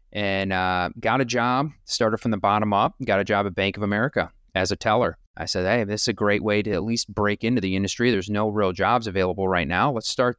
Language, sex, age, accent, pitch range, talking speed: English, male, 30-49, American, 100-130 Hz, 255 wpm